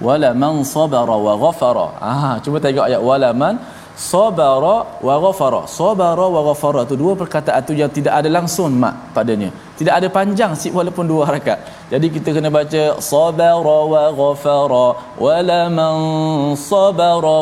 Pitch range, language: 140-185 Hz, Malayalam